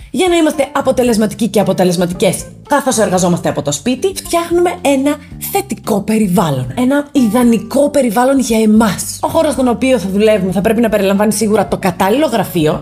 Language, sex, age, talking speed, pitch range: Greek, female, 20-39, 160 wpm, 190-265 Hz